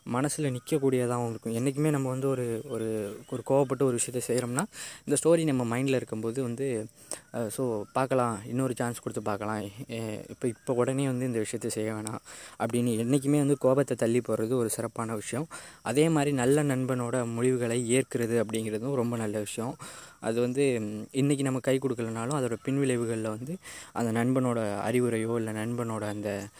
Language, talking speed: Tamil, 145 wpm